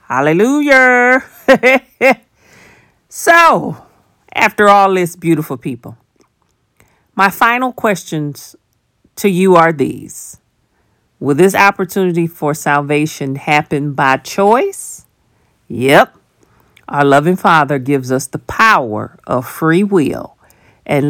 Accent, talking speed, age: American, 95 wpm, 50-69